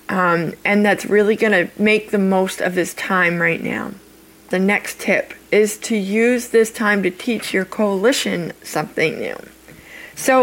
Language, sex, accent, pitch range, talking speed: English, female, American, 180-215 Hz, 165 wpm